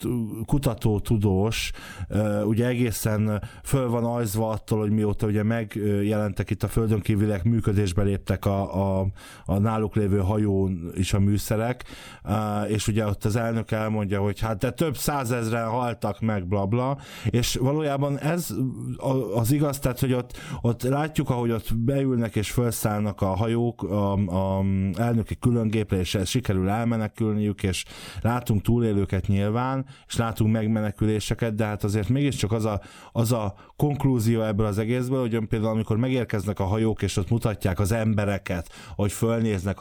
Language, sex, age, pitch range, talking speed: Hungarian, male, 20-39, 100-115 Hz, 150 wpm